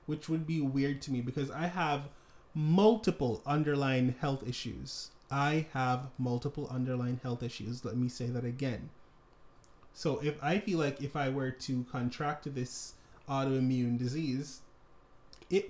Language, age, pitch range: English, 30-49, 130-150 Hz